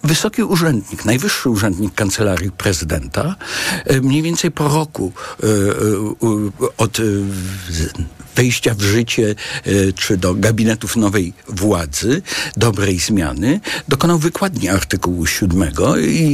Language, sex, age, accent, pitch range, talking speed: Polish, male, 60-79, native, 100-135 Hz, 95 wpm